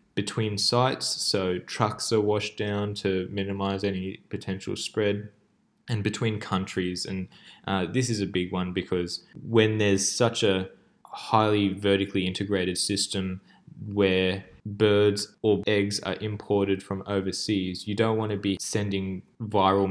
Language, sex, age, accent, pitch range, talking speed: English, male, 10-29, Australian, 95-105 Hz, 140 wpm